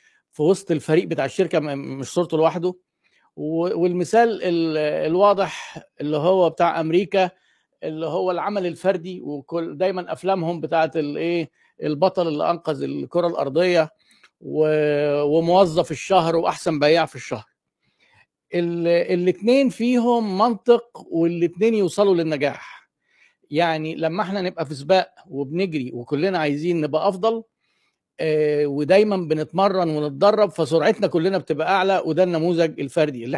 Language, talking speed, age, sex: Arabic, 110 wpm, 50-69, male